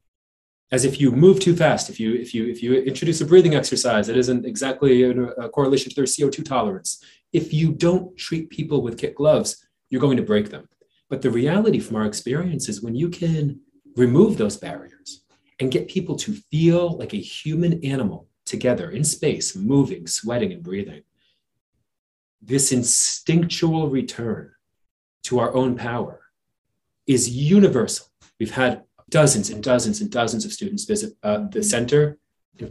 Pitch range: 115-170 Hz